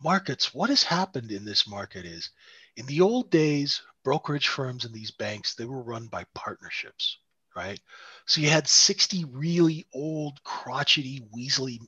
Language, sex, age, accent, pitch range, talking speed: English, male, 40-59, American, 130-190 Hz, 155 wpm